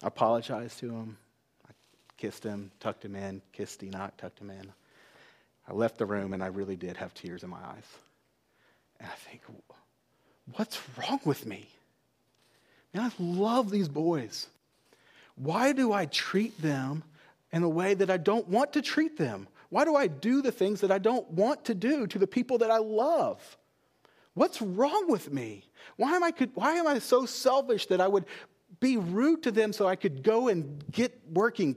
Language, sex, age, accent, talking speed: English, male, 30-49, American, 190 wpm